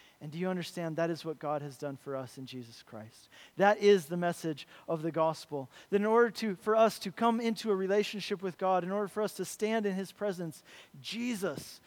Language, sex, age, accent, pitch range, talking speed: English, male, 40-59, American, 160-210 Hz, 230 wpm